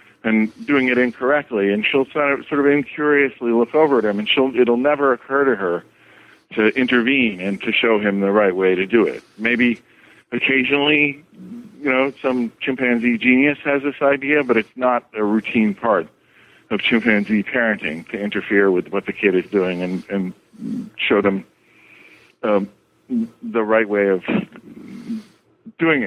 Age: 40-59